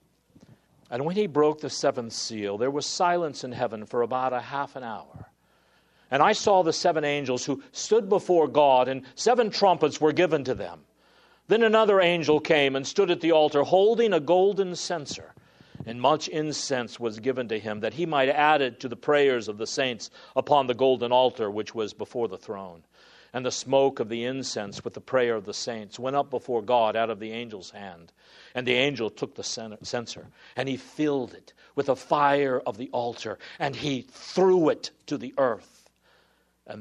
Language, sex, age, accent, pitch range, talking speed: English, male, 50-69, American, 120-155 Hz, 195 wpm